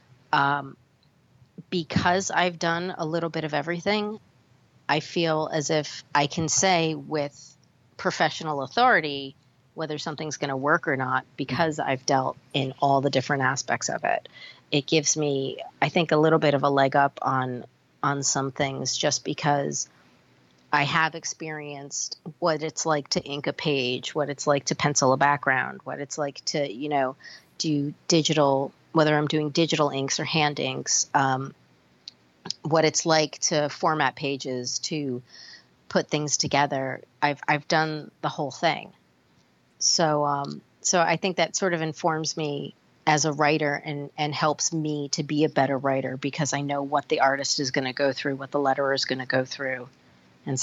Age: 30-49